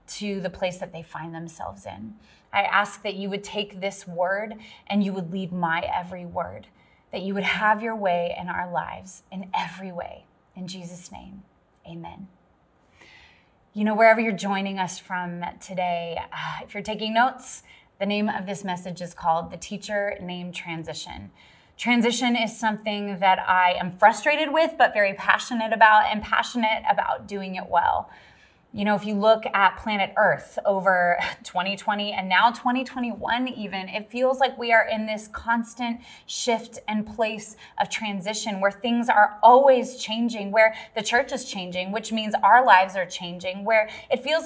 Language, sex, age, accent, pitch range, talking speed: English, female, 20-39, American, 190-240 Hz, 170 wpm